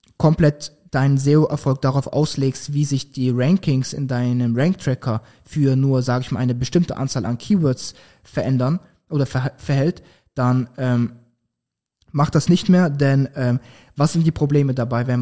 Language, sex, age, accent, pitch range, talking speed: German, male, 20-39, German, 130-160 Hz, 160 wpm